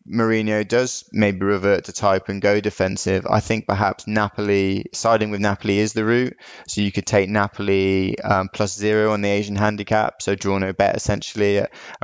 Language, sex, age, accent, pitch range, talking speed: English, male, 20-39, British, 100-110 Hz, 185 wpm